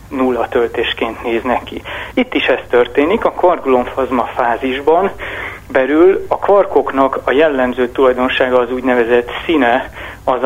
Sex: male